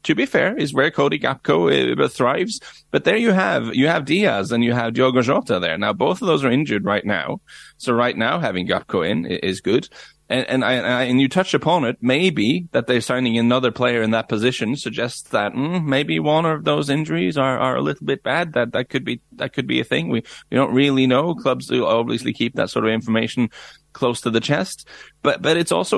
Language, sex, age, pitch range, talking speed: English, male, 30-49, 105-130 Hz, 225 wpm